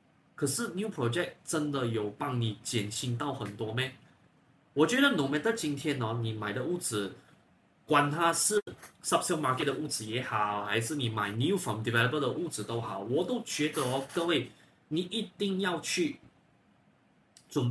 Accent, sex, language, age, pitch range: native, male, Chinese, 20-39, 115-155 Hz